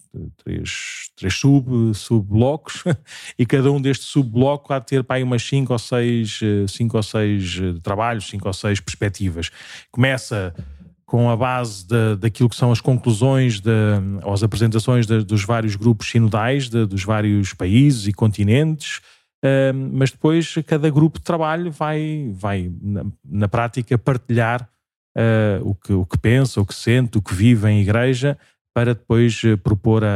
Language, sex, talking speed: Portuguese, male, 160 wpm